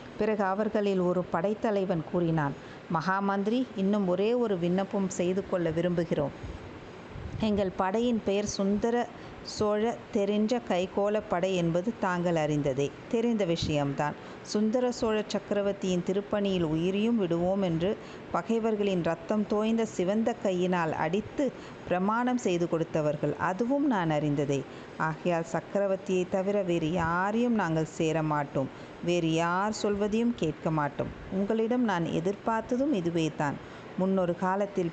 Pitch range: 170-215 Hz